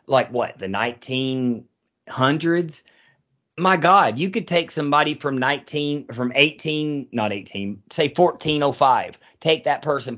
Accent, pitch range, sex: American, 130-165 Hz, male